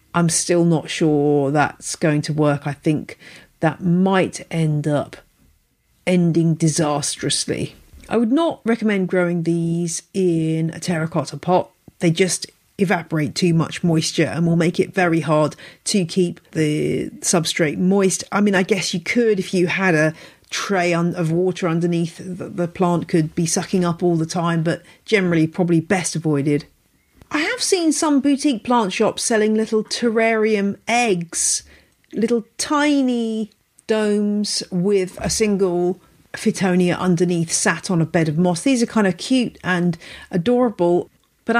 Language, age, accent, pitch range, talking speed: English, 40-59, British, 165-205 Hz, 155 wpm